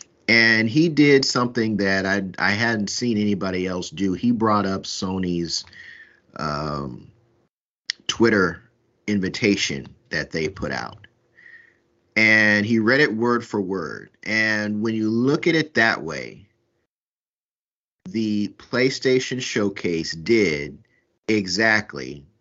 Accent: American